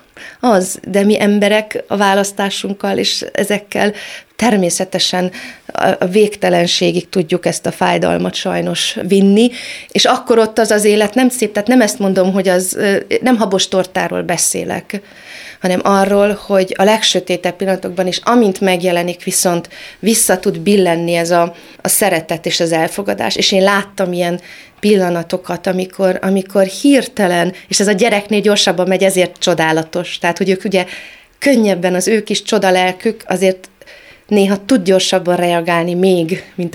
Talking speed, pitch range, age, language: 140 wpm, 175-205 Hz, 30-49, Hungarian